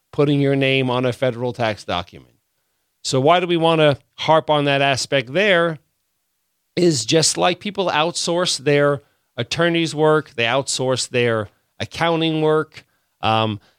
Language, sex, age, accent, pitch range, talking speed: English, male, 40-59, American, 130-160 Hz, 145 wpm